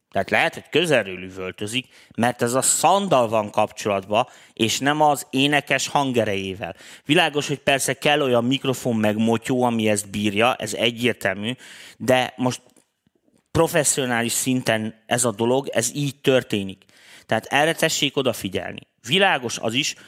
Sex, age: male, 30-49